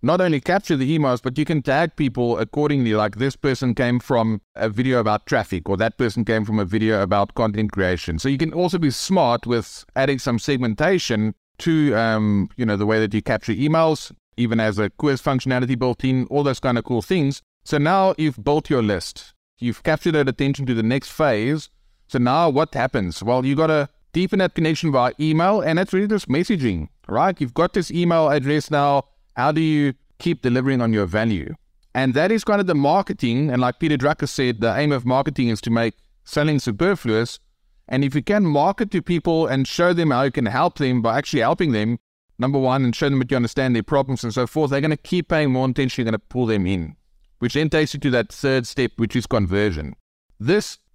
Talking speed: 220 wpm